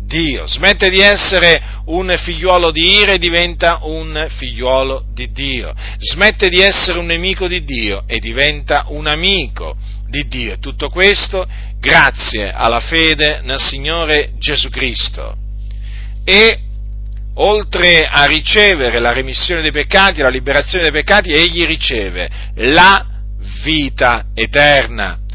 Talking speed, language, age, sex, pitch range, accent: 125 wpm, Italian, 40-59, male, 110-175 Hz, native